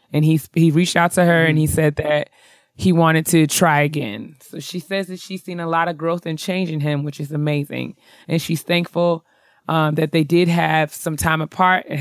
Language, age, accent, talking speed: English, 20-39, American, 225 wpm